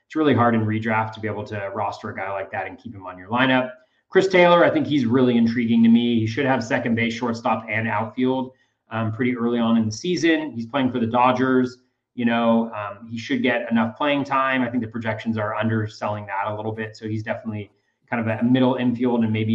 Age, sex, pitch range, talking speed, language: 30-49, male, 110-135 Hz, 240 wpm, English